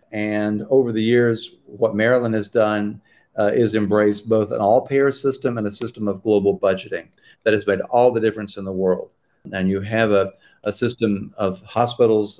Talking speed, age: 185 wpm, 50-69